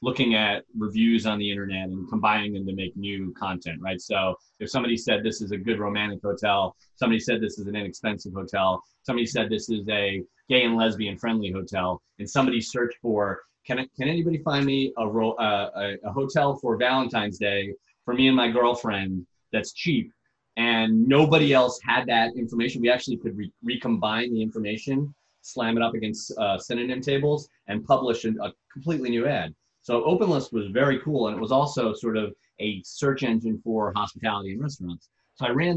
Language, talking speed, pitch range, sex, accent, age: English, 195 wpm, 105-125 Hz, male, American, 30-49